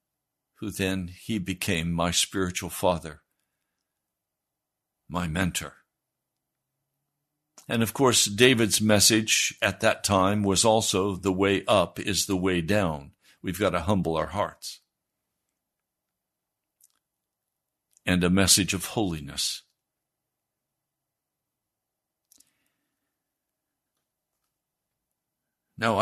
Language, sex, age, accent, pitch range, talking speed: English, male, 60-79, American, 90-115 Hz, 90 wpm